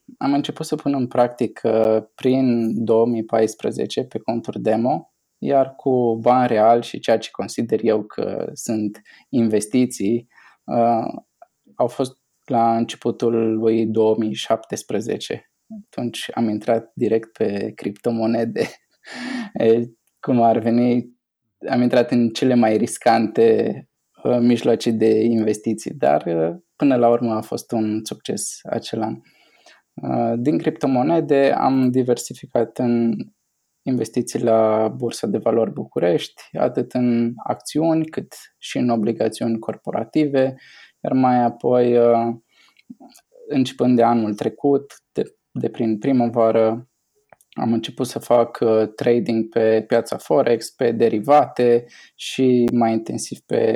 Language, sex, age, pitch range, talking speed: Romanian, male, 20-39, 115-130 Hz, 115 wpm